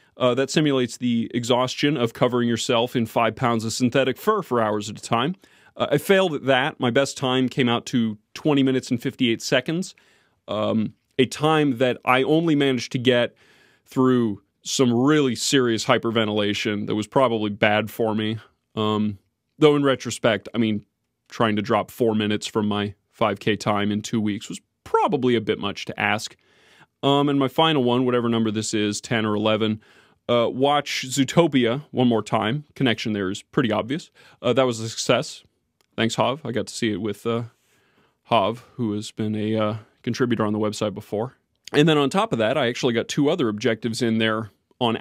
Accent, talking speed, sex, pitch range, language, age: American, 190 wpm, male, 110-130 Hz, English, 30-49